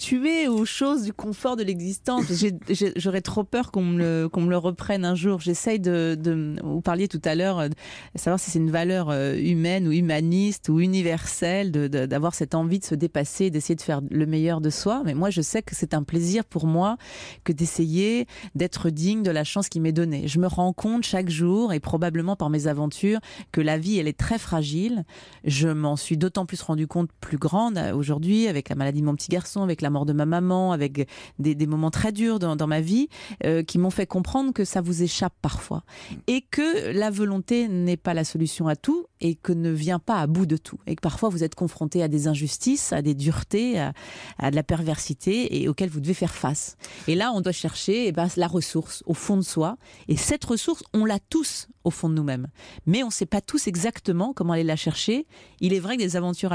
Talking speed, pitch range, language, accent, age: 230 wpm, 160-200 Hz, French, French, 30-49